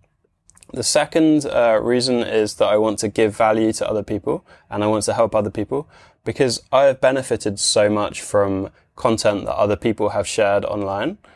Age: 20-39